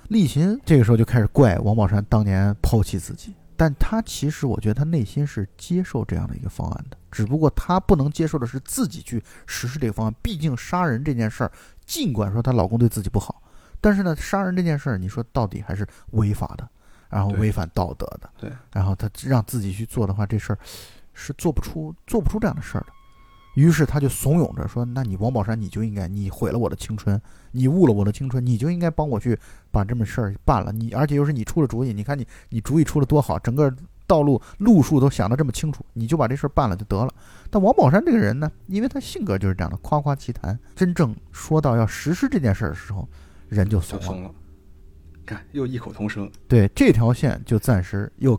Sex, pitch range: male, 105-145 Hz